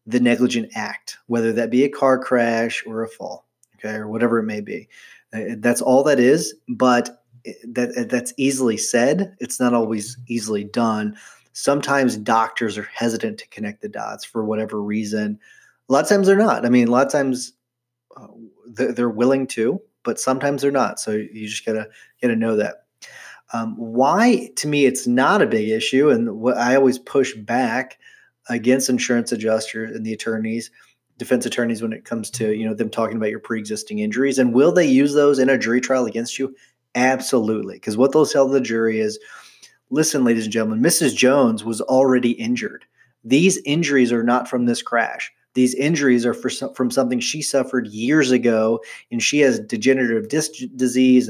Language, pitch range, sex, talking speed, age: English, 115-135 Hz, male, 180 wpm, 30-49